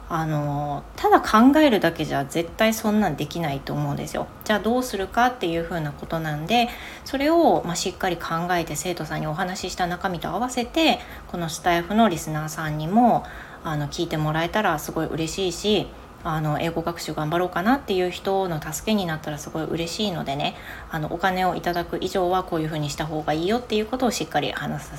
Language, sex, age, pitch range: Japanese, female, 20-39, 150-190 Hz